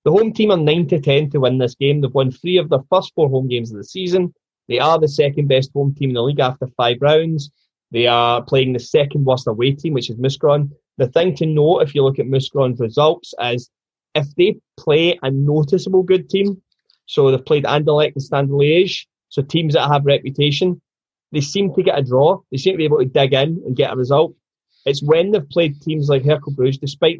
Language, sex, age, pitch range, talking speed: English, male, 20-39, 130-155 Hz, 220 wpm